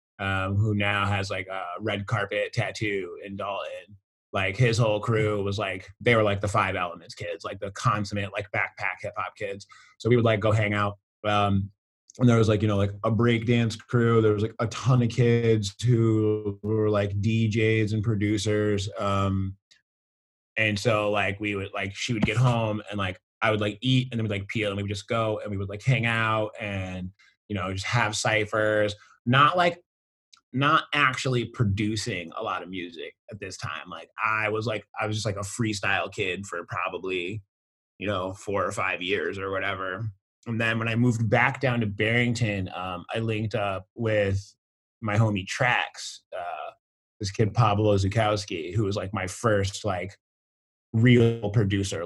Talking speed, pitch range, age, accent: 190 wpm, 100-115 Hz, 20-39, American